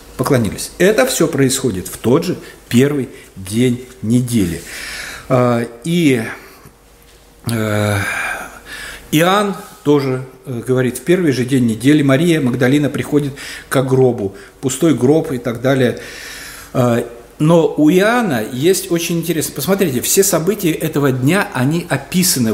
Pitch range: 125-170 Hz